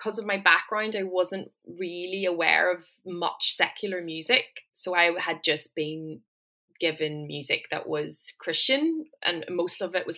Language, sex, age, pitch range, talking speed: English, female, 20-39, 165-215 Hz, 155 wpm